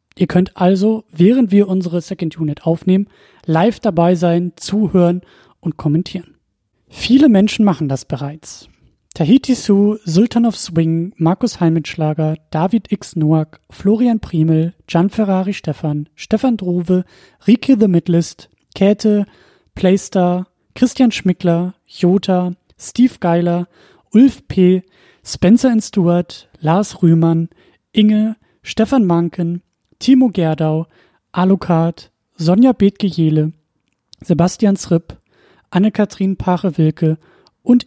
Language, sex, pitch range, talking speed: German, male, 155-200 Hz, 105 wpm